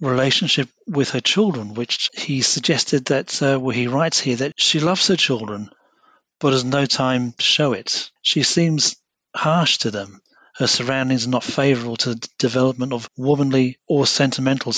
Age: 40-59